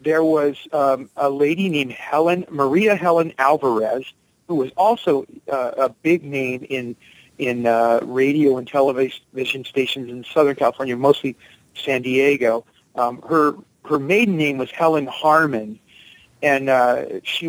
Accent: American